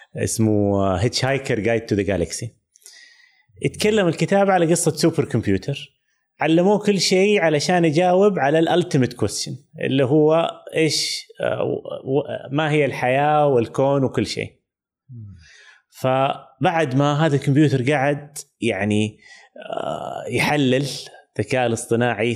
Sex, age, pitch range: male, 30-49, 120-175 Hz